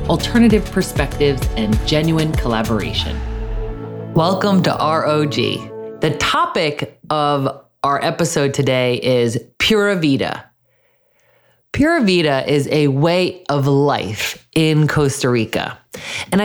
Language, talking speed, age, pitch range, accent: English, 100 wpm, 30-49, 125-185 Hz, American